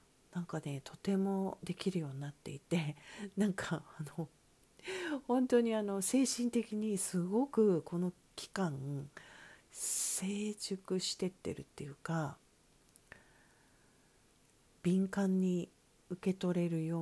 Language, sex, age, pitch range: Japanese, female, 50-69, 155-200 Hz